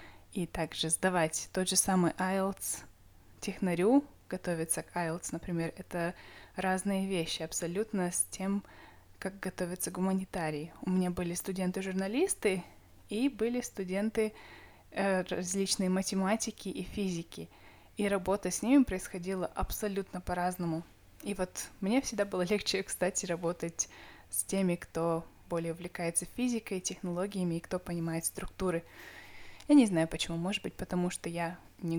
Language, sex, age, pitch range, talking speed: Russian, female, 20-39, 170-195 Hz, 130 wpm